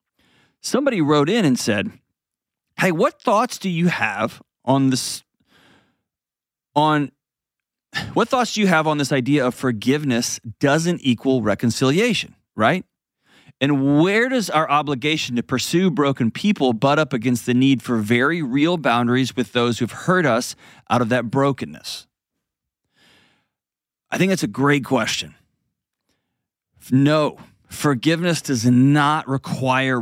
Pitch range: 125-150 Hz